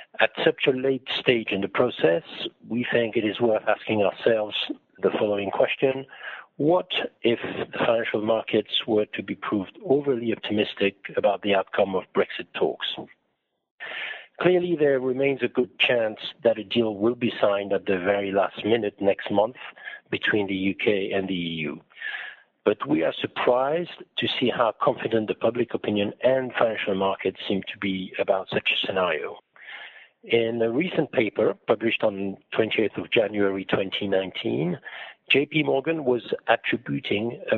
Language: English